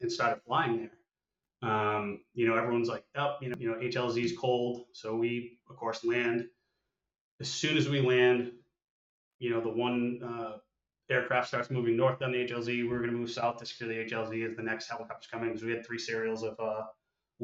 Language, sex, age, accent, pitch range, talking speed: English, male, 20-39, American, 115-125 Hz, 205 wpm